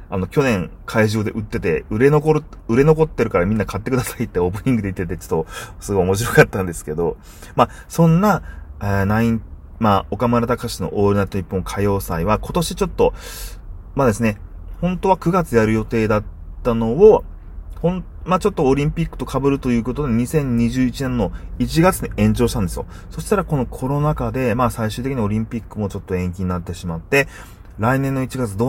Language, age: Japanese, 30-49